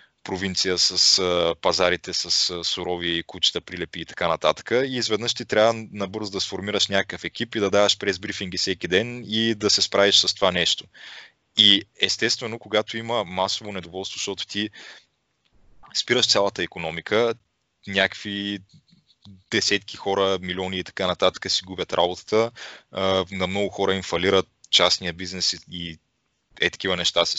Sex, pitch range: male, 90-105 Hz